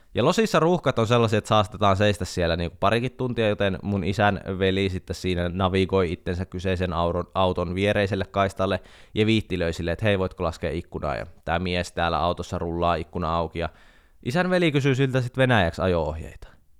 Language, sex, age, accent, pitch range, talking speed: Finnish, male, 20-39, native, 90-115 Hz, 170 wpm